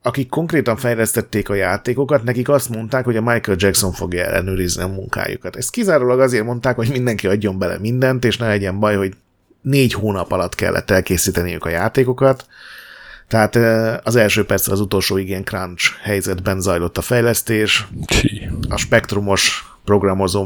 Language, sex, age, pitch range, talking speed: Hungarian, male, 30-49, 100-120 Hz, 155 wpm